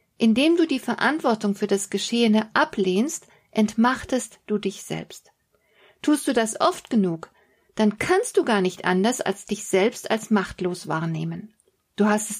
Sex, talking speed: female, 155 wpm